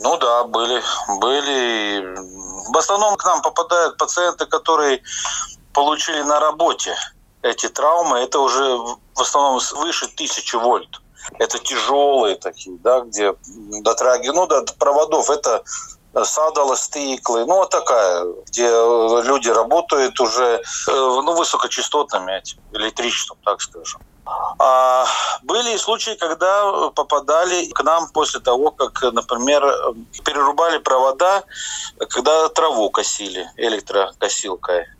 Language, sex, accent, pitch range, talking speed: Russian, male, native, 130-180 Hz, 110 wpm